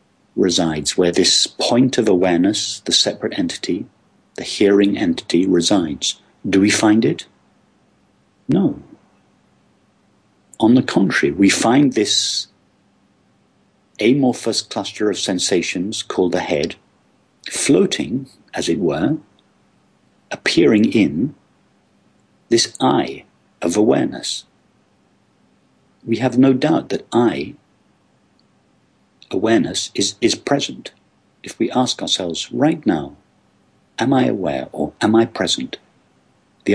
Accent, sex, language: British, male, English